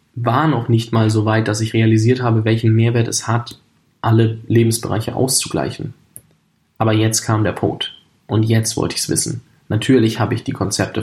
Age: 10-29